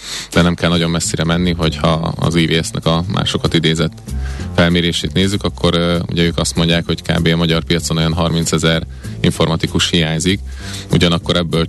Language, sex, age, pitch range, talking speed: Hungarian, male, 30-49, 80-90 Hz, 160 wpm